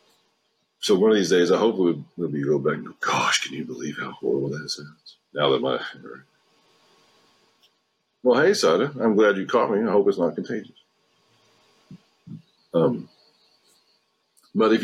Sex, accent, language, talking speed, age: male, American, English, 165 wpm, 50-69